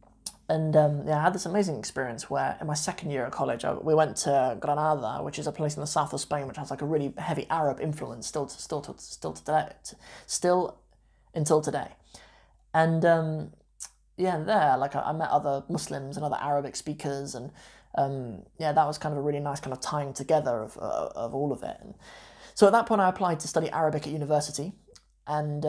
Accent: British